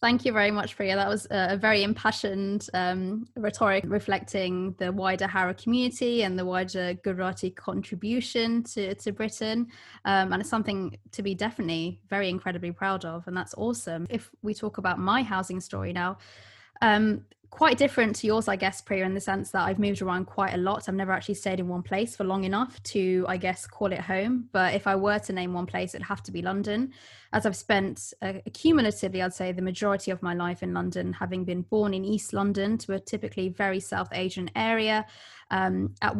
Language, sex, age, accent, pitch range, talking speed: English, female, 20-39, British, 185-220 Hz, 205 wpm